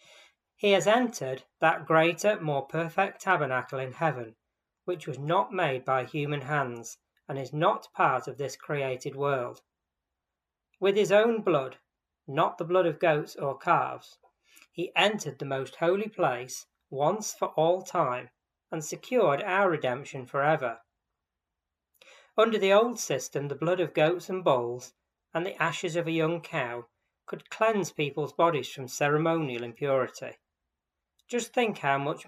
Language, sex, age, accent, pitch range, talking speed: English, female, 40-59, British, 125-175 Hz, 145 wpm